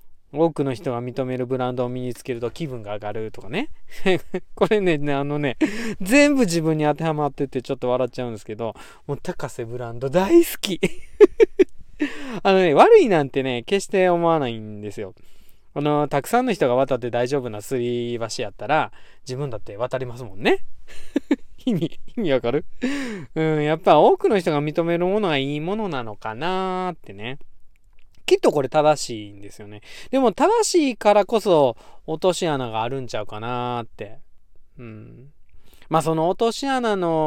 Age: 20-39